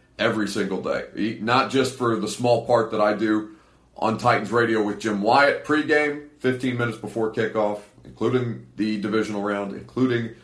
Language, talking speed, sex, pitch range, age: English, 160 wpm, male, 105-135 Hz, 40-59